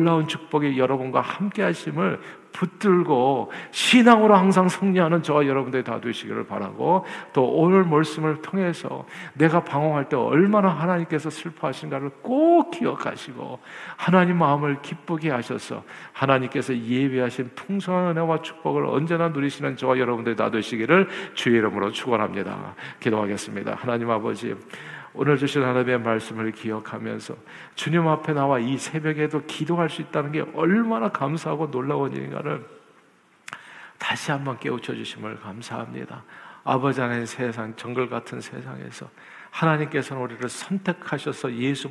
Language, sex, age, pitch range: Korean, male, 50-69, 125-165 Hz